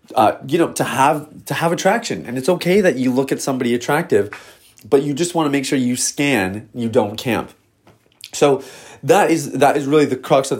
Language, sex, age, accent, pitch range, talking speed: English, male, 30-49, American, 110-140 Hz, 215 wpm